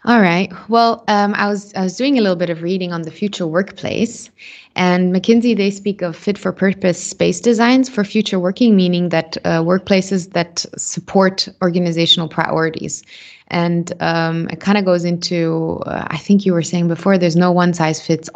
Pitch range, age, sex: 165-190 Hz, 20-39, female